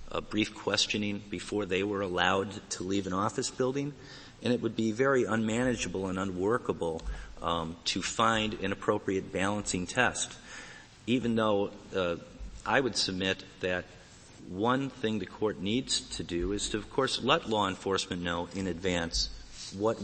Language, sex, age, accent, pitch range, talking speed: English, male, 40-59, American, 95-125 Hz, 155 wpm